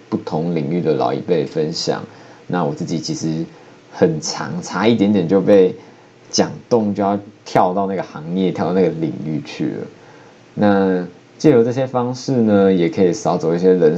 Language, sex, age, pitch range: Chinese, male, 20-39, 90-105 Hz